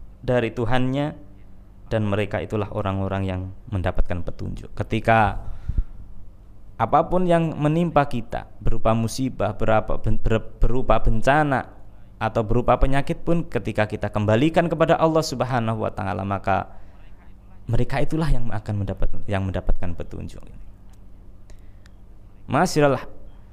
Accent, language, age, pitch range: native, Indonesian, 20-39, 95-120 Hz